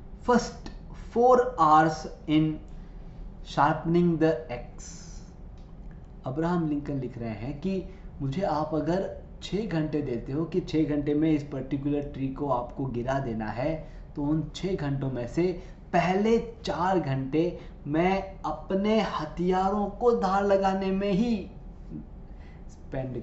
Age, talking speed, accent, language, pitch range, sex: 20-39, 130 wpm, native, Hindi, 150-190 Hz, male